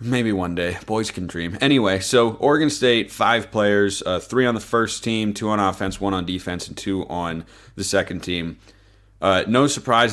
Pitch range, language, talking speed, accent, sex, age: 95-115 Hz, English, 195 wpm, American, male, 30-49